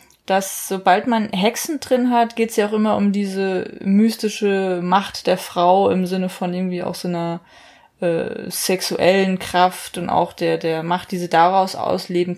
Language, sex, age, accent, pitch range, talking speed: German, female, 20-39, German, 185-230 Hz, 175 wpm